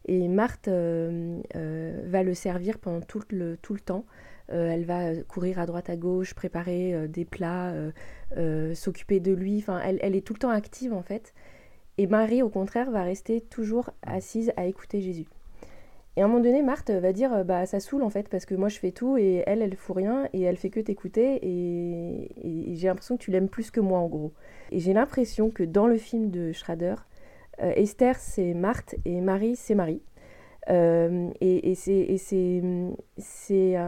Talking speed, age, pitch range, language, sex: 205 wpm, 20-39, 175-210 Hz, French, female